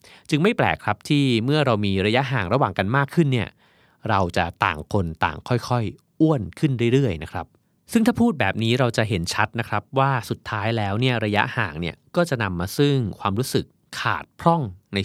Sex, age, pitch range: male, 30-49, 95-130 Hz